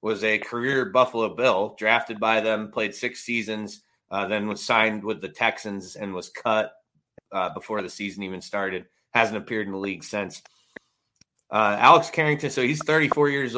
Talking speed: 175 wpm